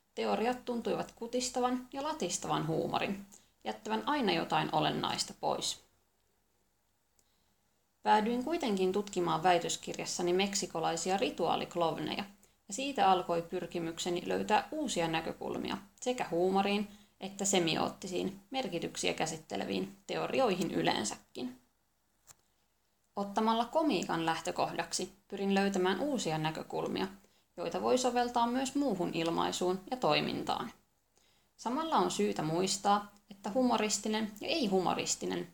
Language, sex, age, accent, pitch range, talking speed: Finnish, female, 20-39, native, 170-230 Hz, 95 wpm